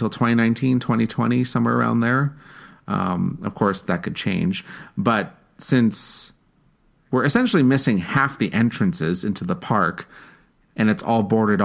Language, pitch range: English, 100-130 Hz